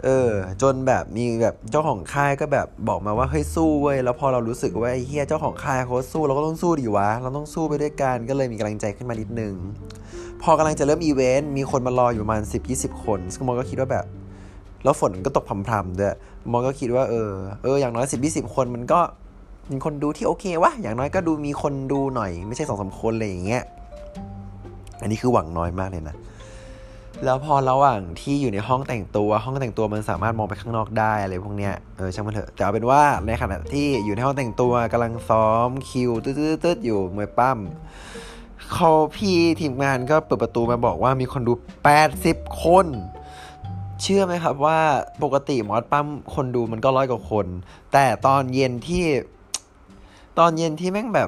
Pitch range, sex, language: 105-140 Hz, male, Thai